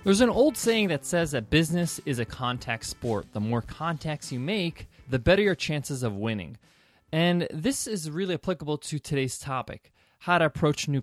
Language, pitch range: English, 130-185 Hz